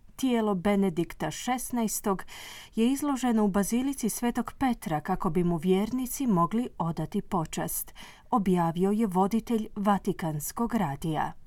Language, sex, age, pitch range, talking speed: Croatian, female, 40-59, 180-230 Hz, 110 wpm